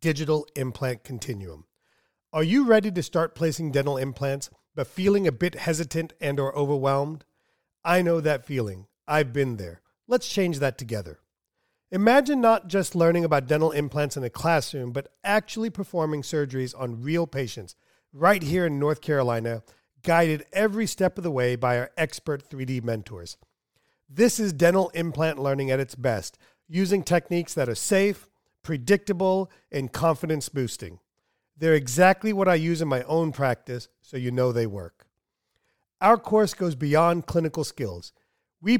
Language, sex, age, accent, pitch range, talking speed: English, male, 40-59, American, 130-180 Hz, 155 wpm